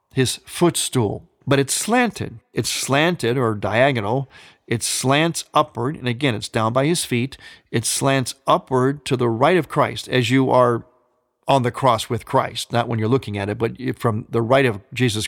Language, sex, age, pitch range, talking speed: English, male, 50-69, 115-135 Hz, 185 wpm